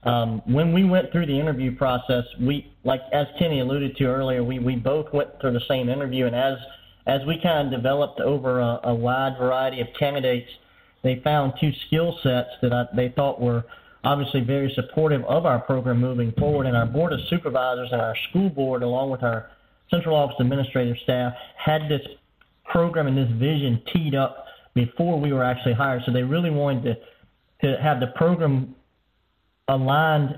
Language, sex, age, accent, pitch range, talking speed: English, male, 40-59, American, 125-150 Hz, 185 wpm